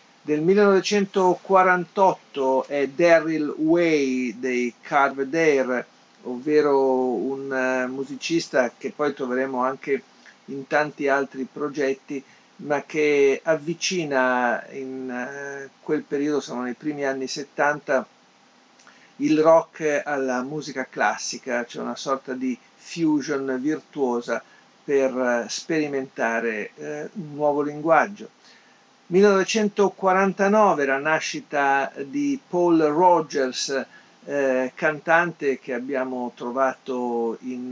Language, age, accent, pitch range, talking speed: Italian, 50-69, native, 130-160 Hz, 90 wpm